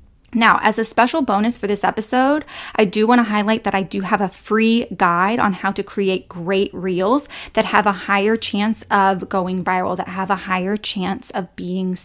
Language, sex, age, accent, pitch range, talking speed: English, female, 20-39, American, 195-235 Hz, 205 wpm